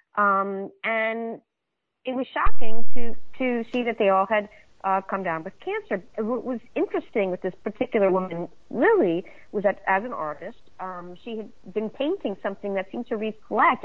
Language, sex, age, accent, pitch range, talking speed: English, female, 40-59, American, 170-230 Hz, 175 wpm